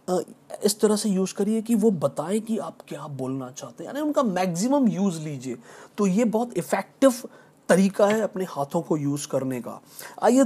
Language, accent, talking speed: Hindi, native, 185 wpm